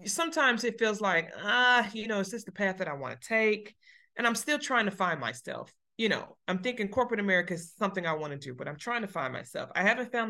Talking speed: 255 wpm